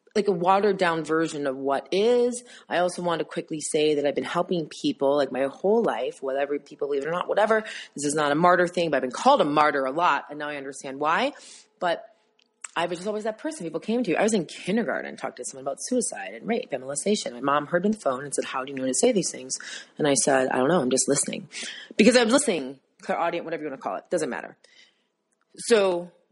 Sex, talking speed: female, 250 wpm